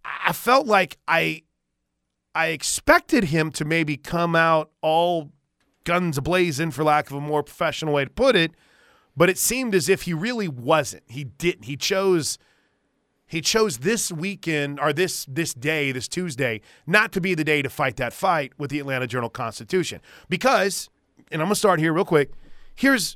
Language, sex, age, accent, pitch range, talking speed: English, male, 30-49, American, 140-185 Hz, 180 wpm